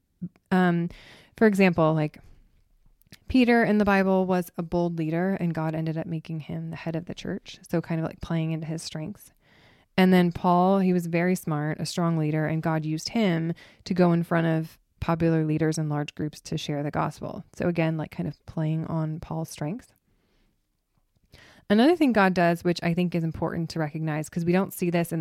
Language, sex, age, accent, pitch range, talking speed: English, female, 20-39, American, 155-180 Hz, 200 wpm